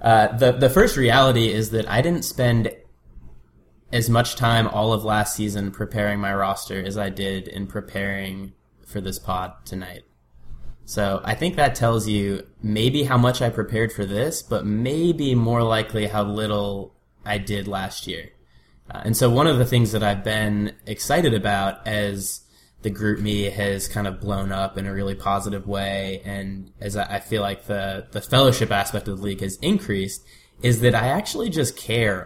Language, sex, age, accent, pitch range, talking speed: English, male, 20-39, American, 100-115 Hz, 180 wpm